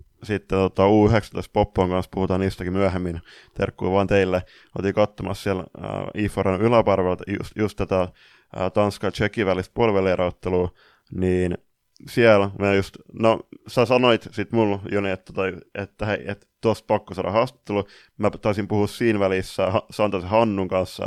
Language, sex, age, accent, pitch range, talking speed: Finnish, male, 20-39, native, 95-115 Hz, 130 wpm